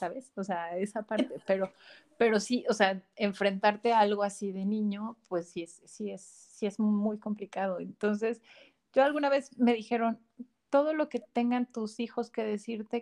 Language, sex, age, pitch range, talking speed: Spanish, female, 30-49, 195-230 Hz, 180 wpm